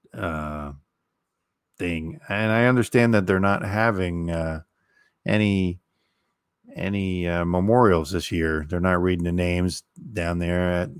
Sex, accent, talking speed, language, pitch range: male, American, 130 wpm, English, 85-100 Hz